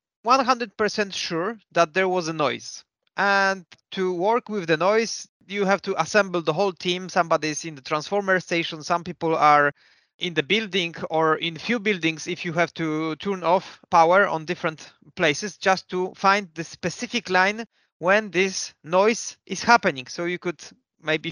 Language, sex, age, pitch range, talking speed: English, male, 30-49, 160-200 Hz, 165 wpm